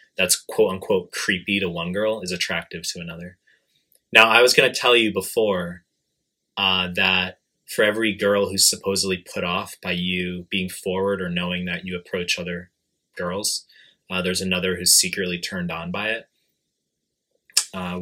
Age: 20-39